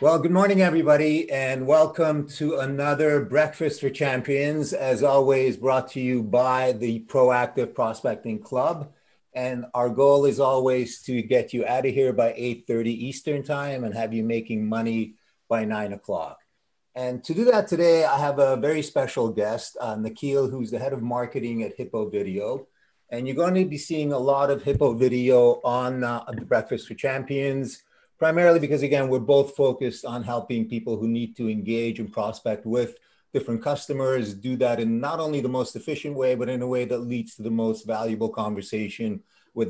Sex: male